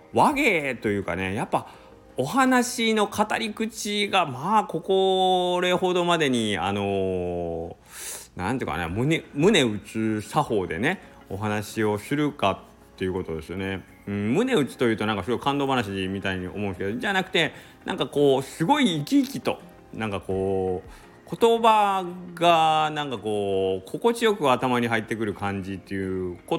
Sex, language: male, Japanese